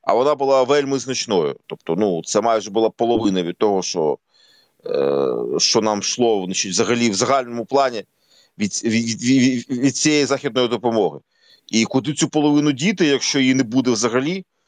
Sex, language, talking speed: male, Ukrainian, 160 wpm